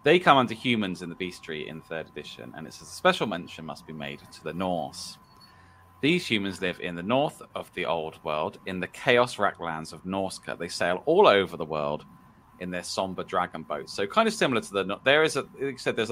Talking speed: 210 wpm